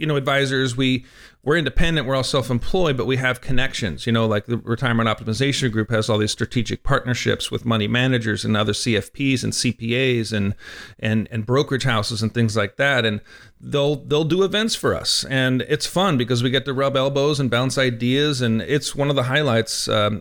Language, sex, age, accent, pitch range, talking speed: English, male, 40-59, American, 115-140 Hz, 200 wpm